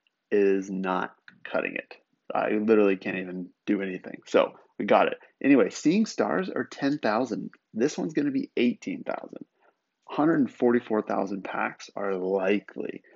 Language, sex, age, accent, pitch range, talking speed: English, male, 30-49, American, 100-130 Hz, 155 wpm